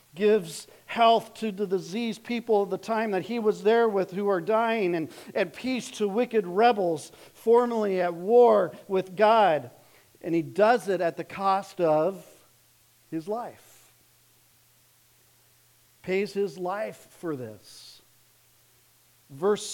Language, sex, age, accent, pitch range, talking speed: English, male, 50-69, American, 160-220 Hz, 135 wpm